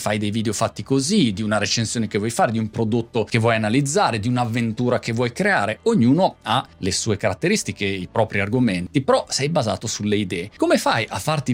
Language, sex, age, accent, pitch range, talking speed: Italian, male, 30-49, native, 105-135 Hz, 205 wpm